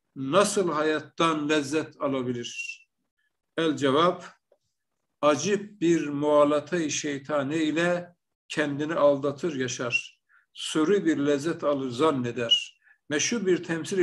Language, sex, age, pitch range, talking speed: Turkish, male, 60-79, 145-175 Hz, 95 wpm